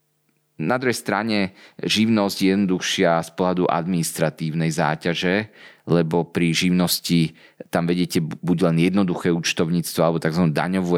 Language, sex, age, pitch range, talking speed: Slovak, male, 30-49, 80-90 Hz, 120 wpm